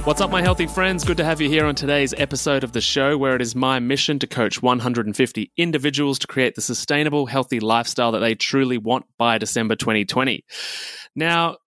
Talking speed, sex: 200 wpm, male